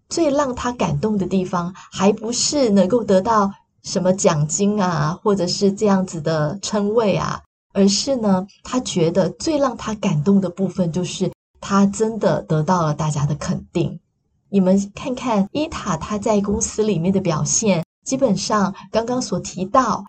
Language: Chinese